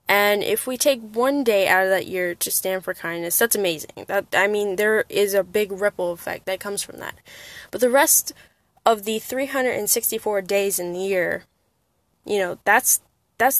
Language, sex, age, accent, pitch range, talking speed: English, female, 10-29, American, 190-240 Hz, 190 wpm